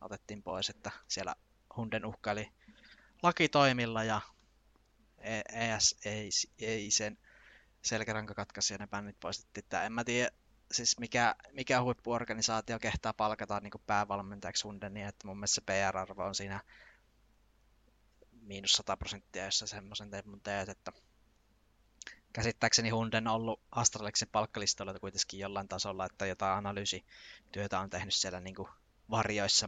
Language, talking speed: Finnish, 125 wpm